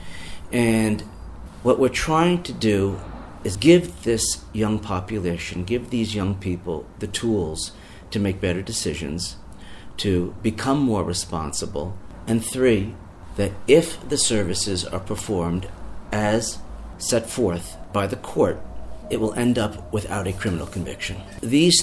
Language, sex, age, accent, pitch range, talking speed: English, male, 40-59, American, 90-110 Hz, 130 wpm